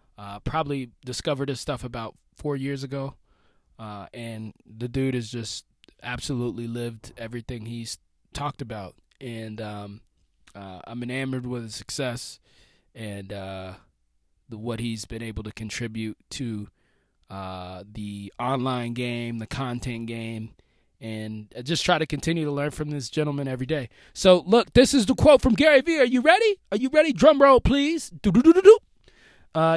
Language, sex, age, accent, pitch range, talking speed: English, male, 20-39, American, 115-175 Hz, 160 wpm